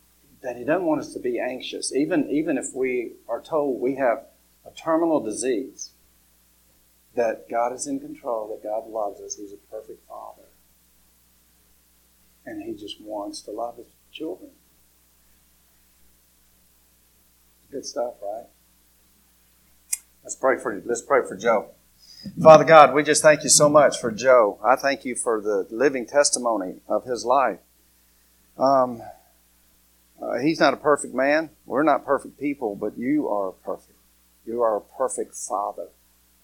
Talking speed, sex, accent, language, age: 150 wpm, male, American, English, 50-69